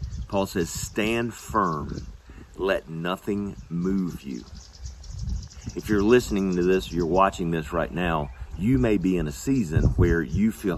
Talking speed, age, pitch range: 155 wpm, 40-59, 75-100 Hz